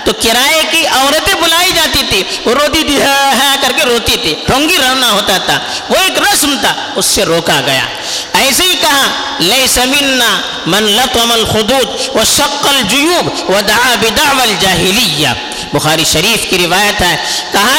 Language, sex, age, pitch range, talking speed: Urdu, female, 50-69, 200-295 Hz, 150 wpm